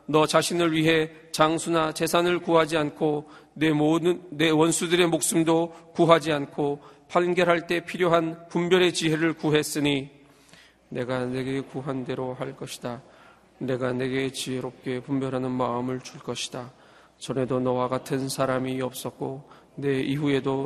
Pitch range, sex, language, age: 130-160 Hz, male, Korean, 40-59